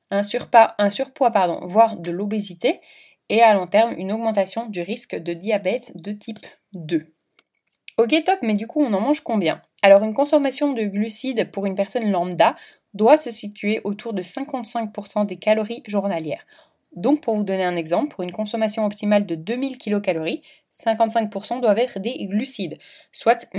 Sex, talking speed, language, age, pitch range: female, 170 wpm, French, 20-39, 190-240 Hz